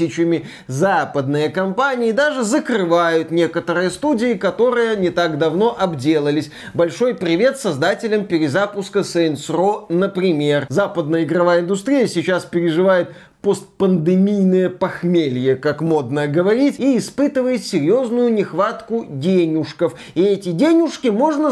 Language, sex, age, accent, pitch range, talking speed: Russian, male, 20-39, native, 170-250 Hz, 105 wpm